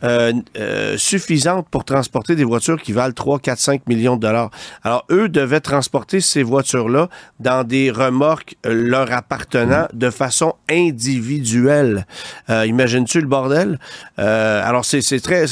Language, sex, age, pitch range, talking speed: French, male, 40-59, 120-150 Hz, 145 wpm